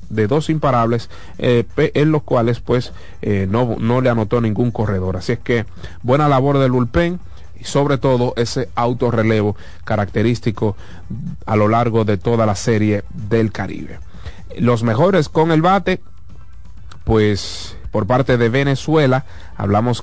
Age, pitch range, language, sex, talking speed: 30-49, 100-125 Hz, Spanish, male, 145 wpm